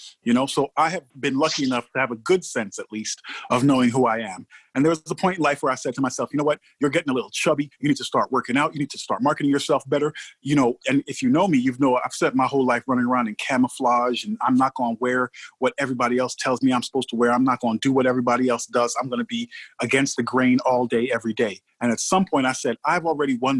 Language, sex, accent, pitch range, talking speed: English, male, American, 120-150 Hz, 290 wpm